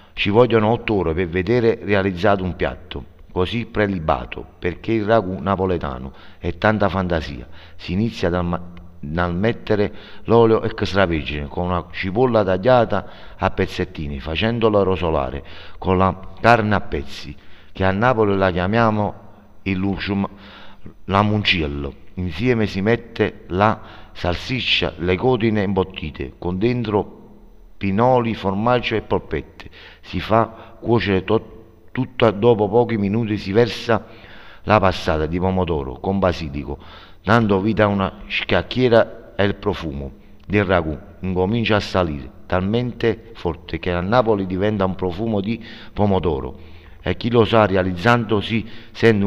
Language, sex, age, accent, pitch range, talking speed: Italian, male, 50-69, native, 90-110 Hz, 130 wpm